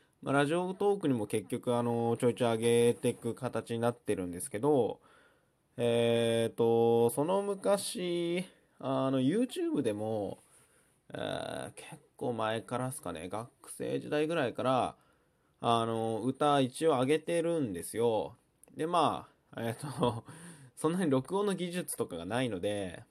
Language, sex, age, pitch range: Japanese, male, 20-39, 110-145 Hz